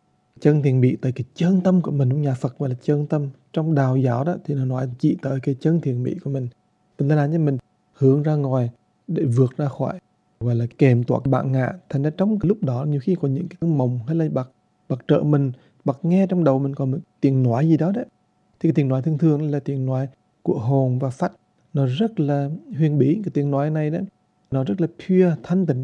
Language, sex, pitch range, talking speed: English, male, 135-160 Hz, 250 wpm